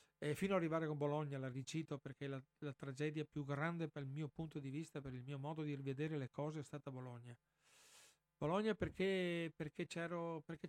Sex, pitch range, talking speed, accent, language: male, 145-170 Hz, 200 wpm, native, Italian